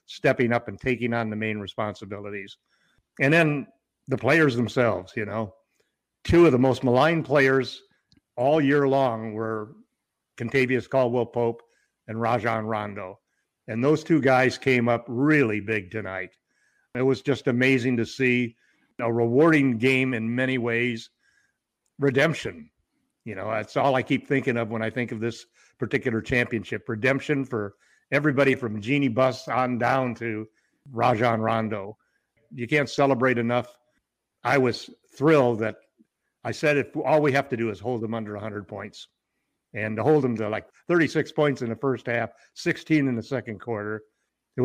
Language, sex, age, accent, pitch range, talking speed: English, male, 50-69, American, 110-135 Hz, 160 wpm